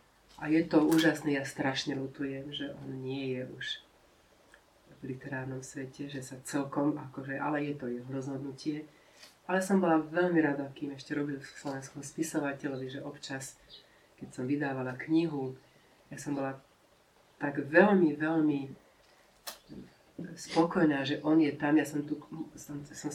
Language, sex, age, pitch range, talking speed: Slovak, female, 40-59, 135-155 Hz, 145 wpm